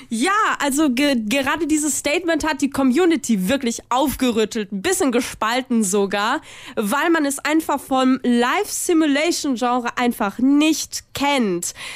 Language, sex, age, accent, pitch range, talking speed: German, female, 20-39, German, 230-310 Hz, 115 wpm